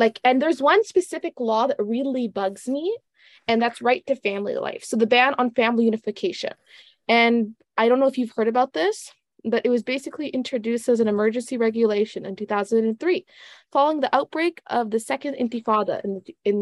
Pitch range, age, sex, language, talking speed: 210-260 Hz, 20-39, female, English, 185 wpm